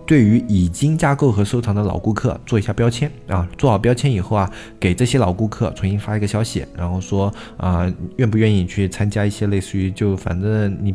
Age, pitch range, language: 20-39, 90-115 Hz, Chinese